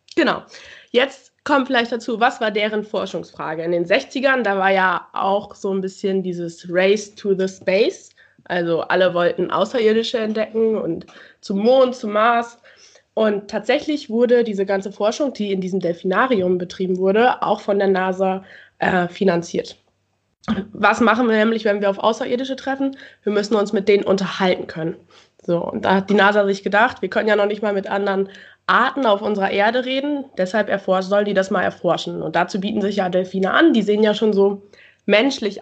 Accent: German